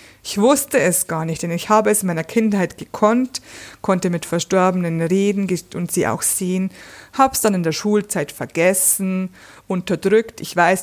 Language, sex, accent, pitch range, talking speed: German, female, German, 155-200 Hz, 170 wpm